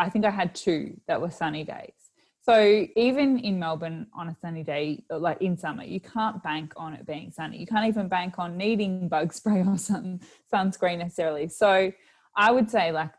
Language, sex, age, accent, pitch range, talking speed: English, female, 20-39, Australian, 160-190 Hz, 195 wpm